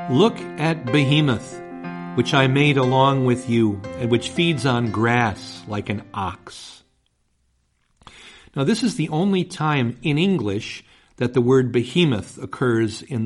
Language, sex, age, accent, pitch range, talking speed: English, male, 50-69, American, 110-135 Hz, 140 wpm